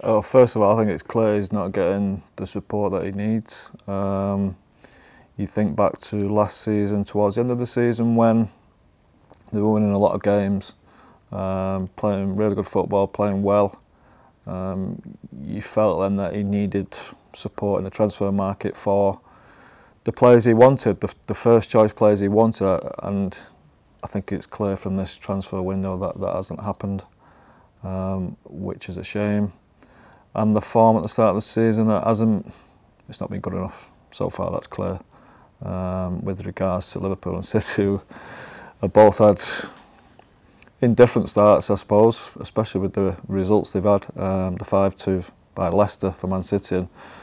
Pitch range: 95-105 Hz